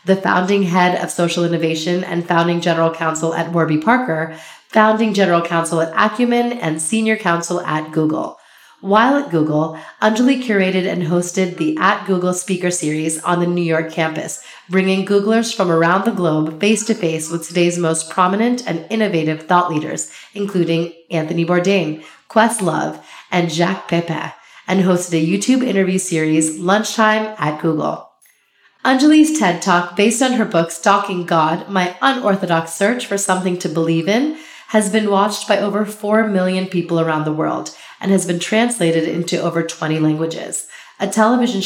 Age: 30-49